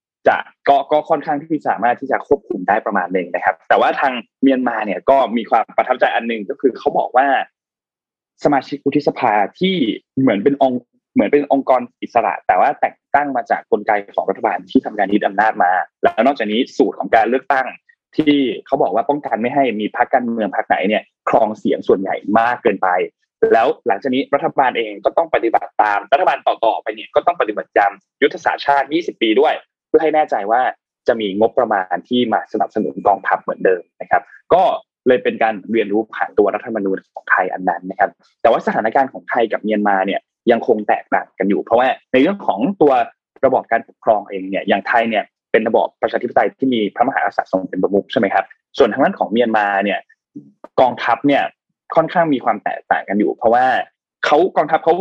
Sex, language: male, Thai